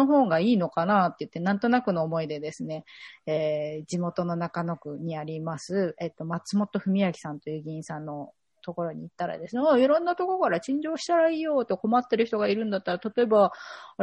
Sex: female